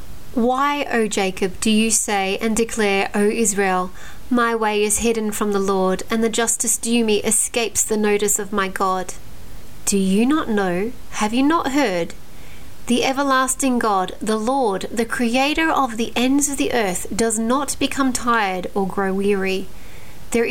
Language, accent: English, Australian